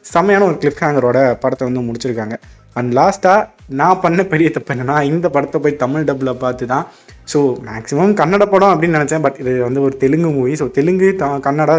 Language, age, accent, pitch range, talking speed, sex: Tamil, 20-39, native, 140-185 Hz, 185 wpm, male